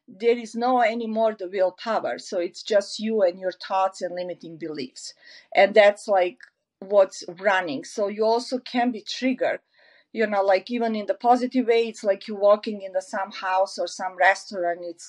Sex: female